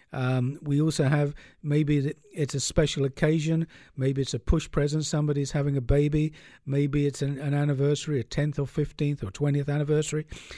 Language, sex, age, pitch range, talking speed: English, male, 50-69, 140-170 Hz, 170 wpm